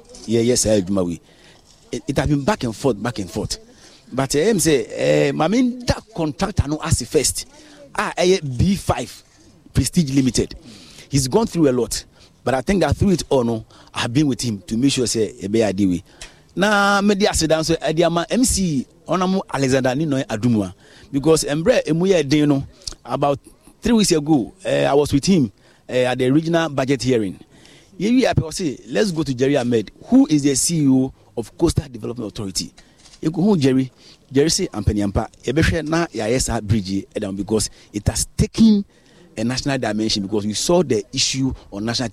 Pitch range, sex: 110-165 Hz, male